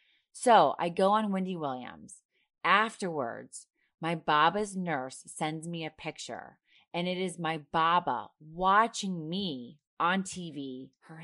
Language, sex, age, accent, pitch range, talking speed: English, female, 30-49, American, 150-190 Hz, 130 wpm